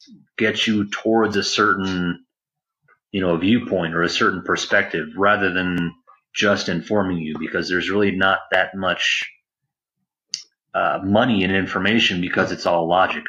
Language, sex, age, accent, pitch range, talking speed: English, male, 30-49, American, 90-110 Hz, 145 wpm